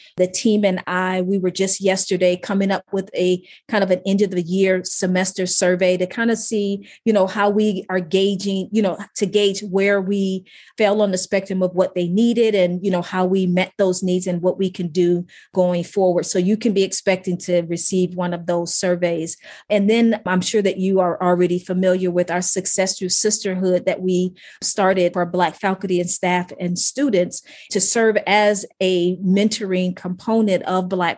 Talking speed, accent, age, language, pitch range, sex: 200 wpm, American, 40-59, English, 180-200 Hz, female